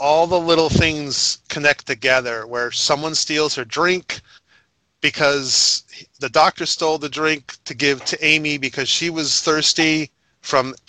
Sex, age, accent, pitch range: male, 30-49, American, 120-145 Hz